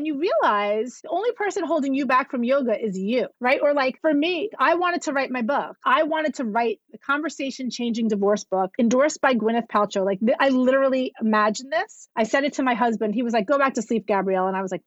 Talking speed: 240 wpm